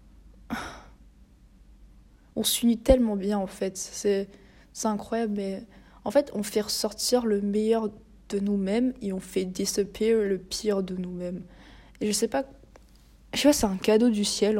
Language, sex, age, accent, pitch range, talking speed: French, female, 20-39, French, 190-215 Hz, 155 wpm